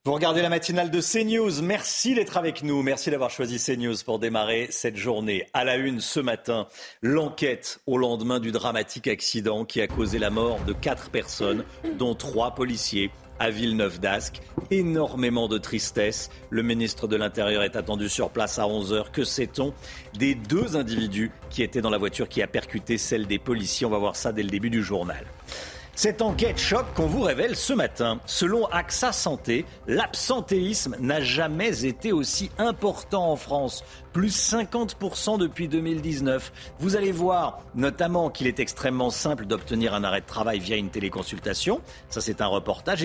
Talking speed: 175 wpm